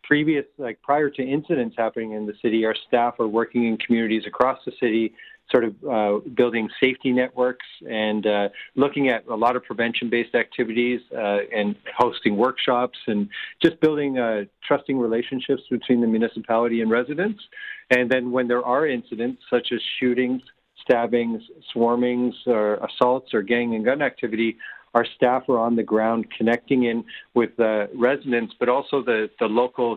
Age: 50-69